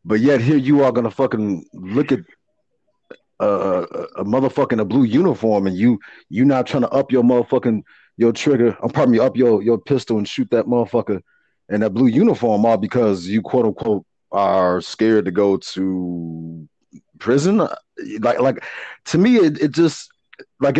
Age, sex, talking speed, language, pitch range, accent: 30-49, male, 180 wpm, English, 105-165 Hz, American